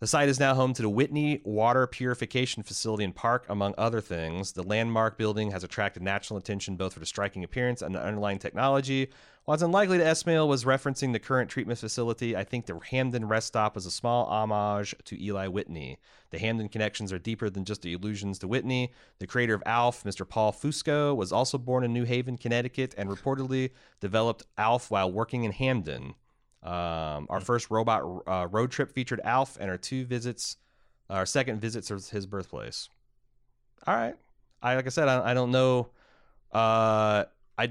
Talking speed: 190 wpm